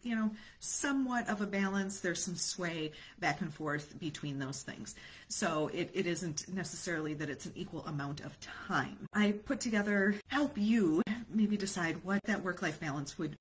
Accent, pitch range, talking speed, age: American, 170-220 Hz, 180 wpm, 40-59